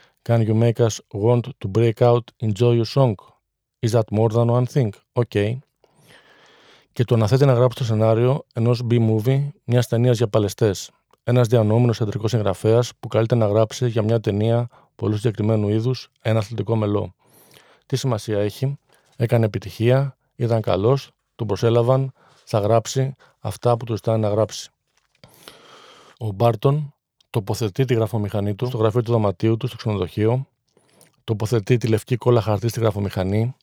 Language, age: Greek, 40-59